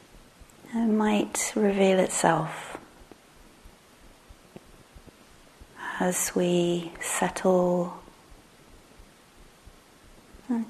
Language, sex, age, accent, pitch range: English, female, 30-49, British, 175-190 Hz